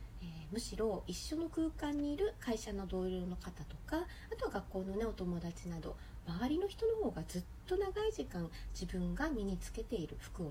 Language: Japanese